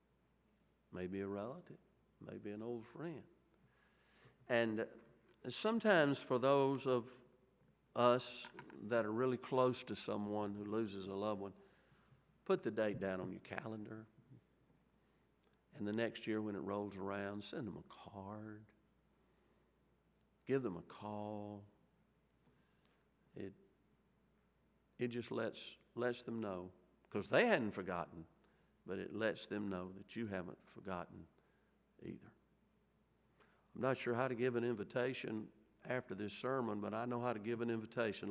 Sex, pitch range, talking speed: male, 105-125 Hz, 135 wpm